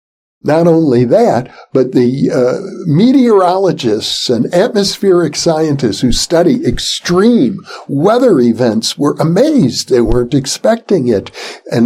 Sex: male